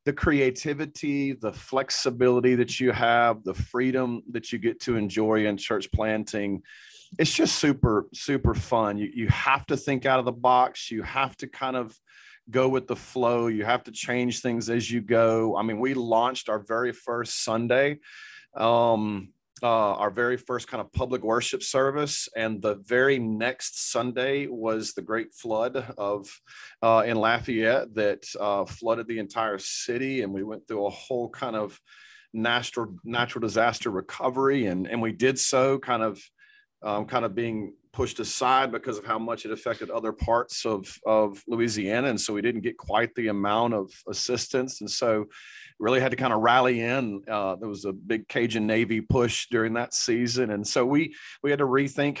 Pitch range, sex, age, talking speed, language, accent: 110-125 Hz, male, 30-49, 180 wpm, English, American